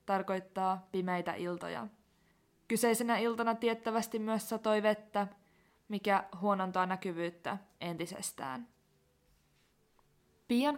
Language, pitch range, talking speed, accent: Finnish, 200-245 Hz, 80 wpm, native